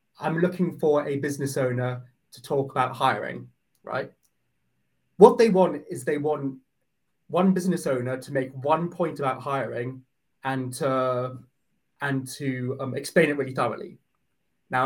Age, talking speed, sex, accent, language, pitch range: 20-39, 150 wpm, male, British, English, 130-175 Hz